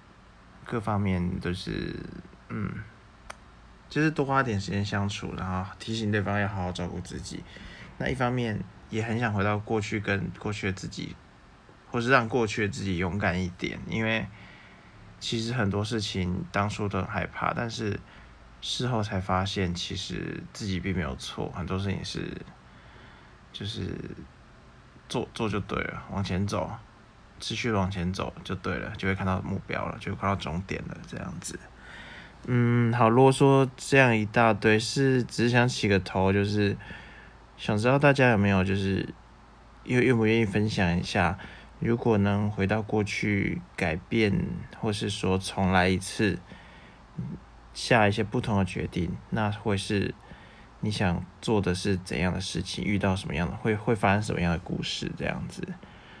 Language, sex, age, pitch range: English, male, 20-39, 95-115 Hz